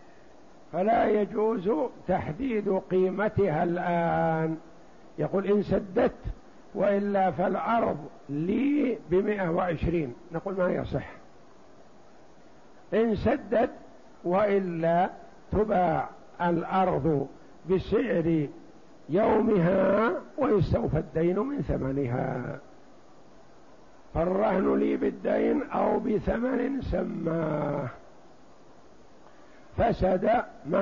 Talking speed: 70 wpm